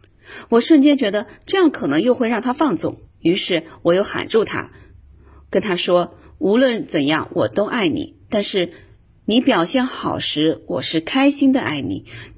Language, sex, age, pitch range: Chinese, female, 30-49, 170-260 Hz